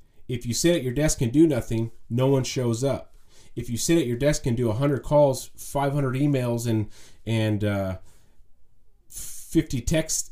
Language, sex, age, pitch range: English, male, 30-49, 110-135 Hz